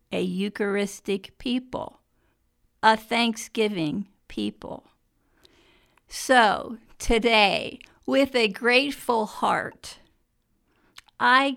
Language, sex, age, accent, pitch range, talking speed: English, female, 50-69, American, 205-250 Hz, 65 wpm